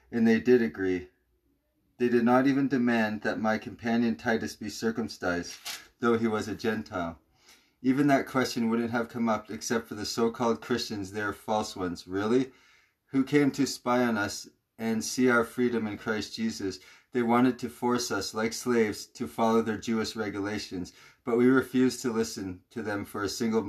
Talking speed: 180 wpm